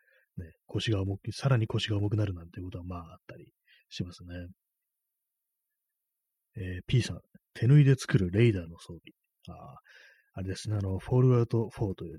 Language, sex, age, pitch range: Japanese, male, 30-49, 90-125 Hz